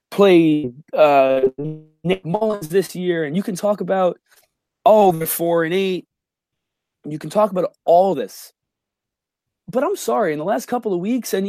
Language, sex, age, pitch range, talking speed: English, male, 20-39, 150-195 Hz, 180 wpm